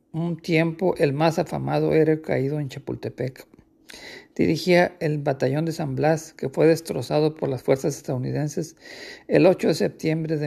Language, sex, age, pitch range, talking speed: Spanish, male, 50-69, 150-170 Hz, 155 wpm